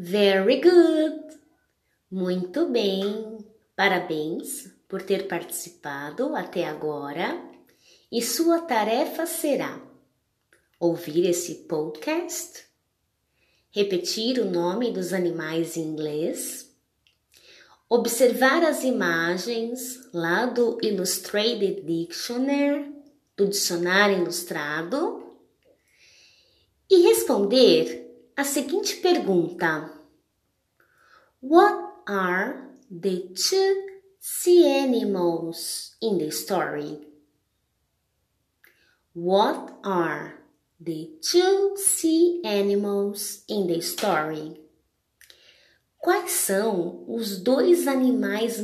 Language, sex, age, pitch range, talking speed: Portuguese, female, 20-39, 170-280 Hz, 75 wpm